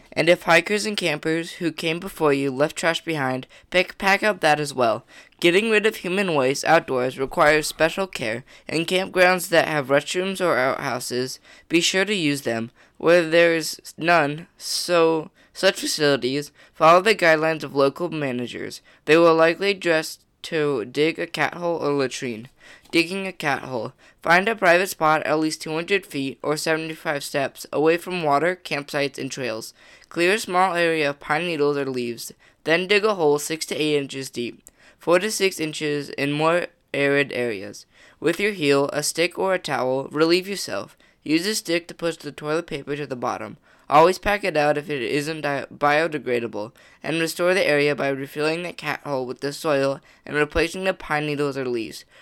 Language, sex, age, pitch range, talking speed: English, female, 10-29, 140-175 Hz, 180 wpm